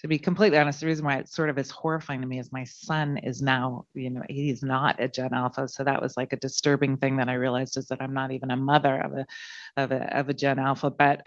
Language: English